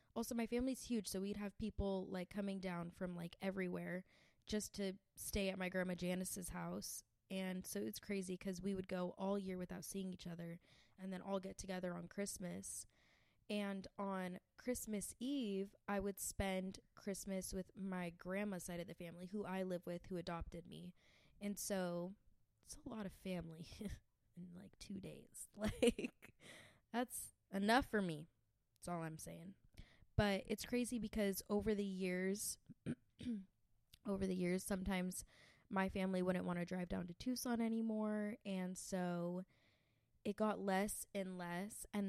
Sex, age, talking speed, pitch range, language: female, 20-39, 165 wpm, 175-200 Hz, English